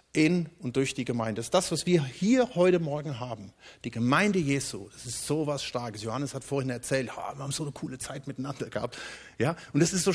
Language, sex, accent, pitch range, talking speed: German, male, German, 130-185 Hz, 225 wpm